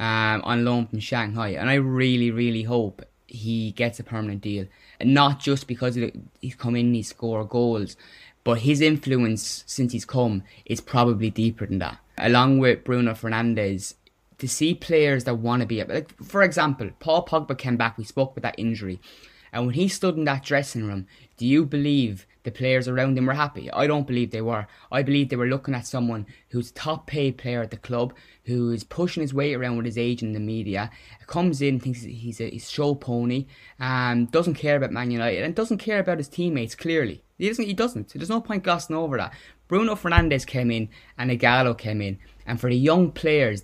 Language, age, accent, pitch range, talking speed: English, 20-39, Irish, 115-140 Hz, 205 wpm